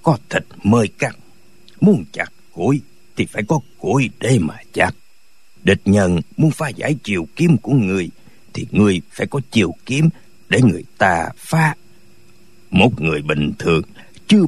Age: 60-79